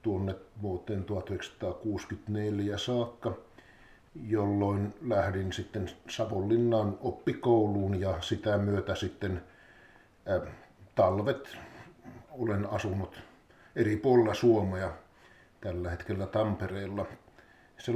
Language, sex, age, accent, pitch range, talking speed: Finnish, male, 50-69, native, 95-115 Hz, 75 wpm